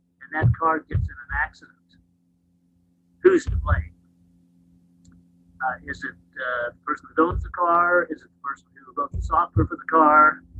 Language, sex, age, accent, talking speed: English, male, 50-69, American, 170 wpm